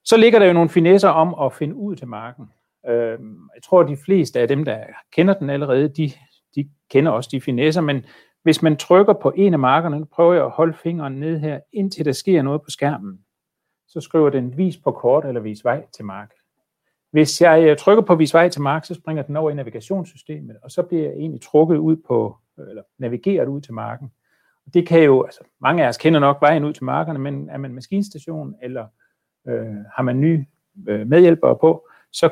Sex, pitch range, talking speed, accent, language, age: male, 130-165 Hz, 210 wpm, native, Danish, 40-59